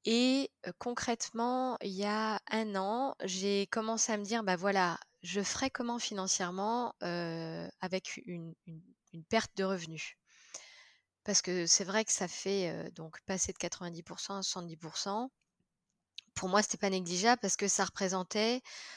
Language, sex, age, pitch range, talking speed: French, female, 20-39, 185-225 Hz, 150 wpm